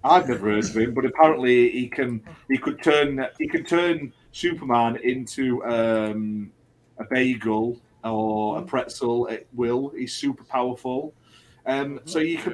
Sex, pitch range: male, 120-140 Hz